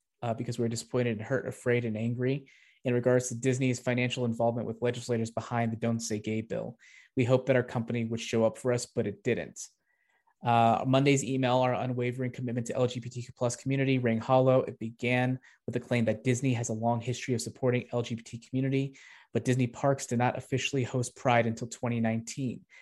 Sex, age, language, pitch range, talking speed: male, 20-39, English, 115-130 Hz, 195 wpm